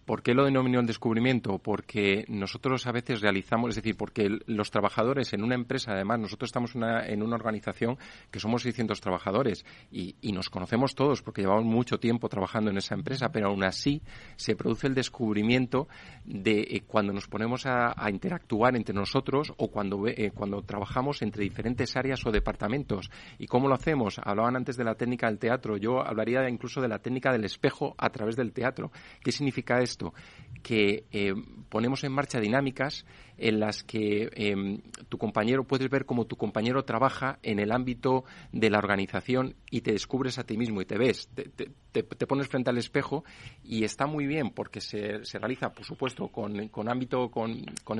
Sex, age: male, 40-59